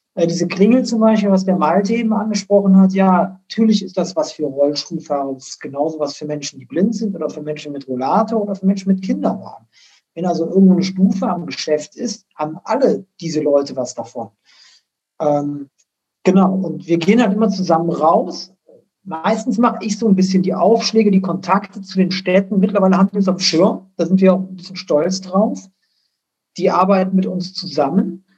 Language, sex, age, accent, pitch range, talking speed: German, male, 50-69, German, 160-200 Hz, 190 wpm